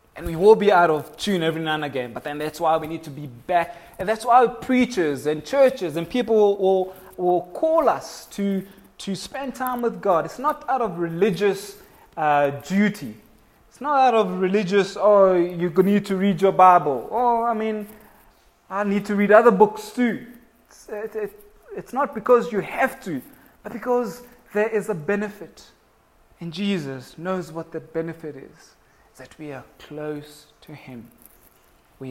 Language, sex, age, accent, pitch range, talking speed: English, male, 20-39, South African, 160-215 Hz, 180 wpm